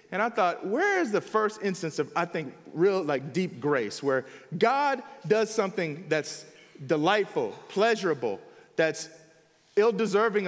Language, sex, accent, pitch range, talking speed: English, male, American, 170-255 Hz, 135 wpm